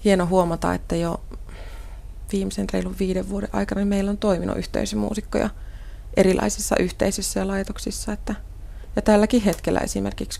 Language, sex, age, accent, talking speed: Finnish, female, 20-39, native, 135 wpm